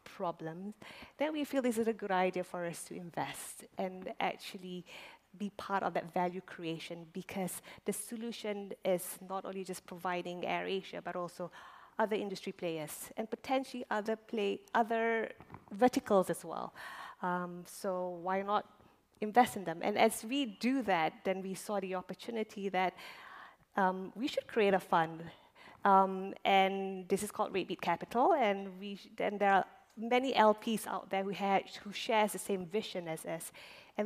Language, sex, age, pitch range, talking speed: English, female, 20-39, 180-215 Hz, 165 wpm